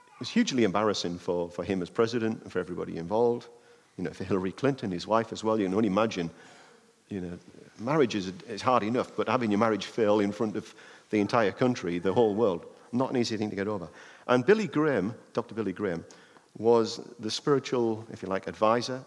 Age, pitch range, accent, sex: 50-69, 100-140 Hz, British, male